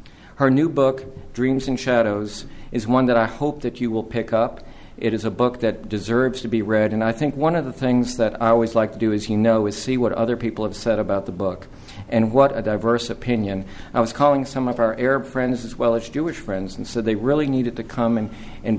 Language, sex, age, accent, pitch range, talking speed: English, male, 50-69, American, 110-130 Hz, 250 wpm